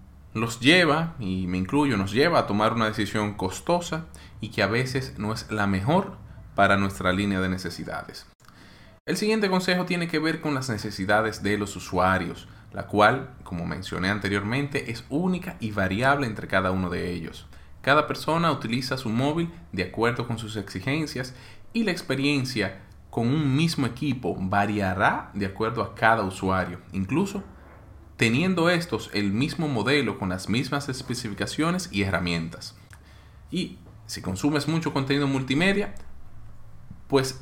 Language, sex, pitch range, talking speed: Spanish, male, 95-140 Hz, 150 wpm